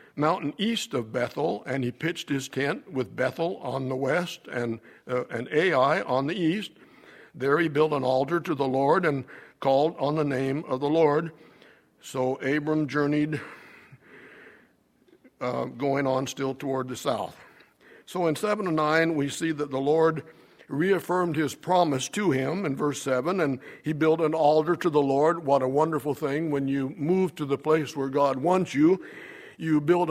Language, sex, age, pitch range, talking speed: English, male, 60-79, 140-170 Hz, 175 wpm